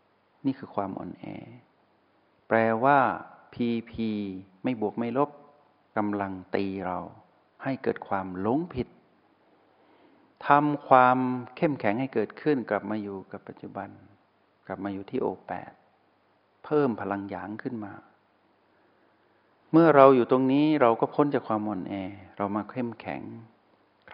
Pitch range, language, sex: 100-125 Hz, Thai, male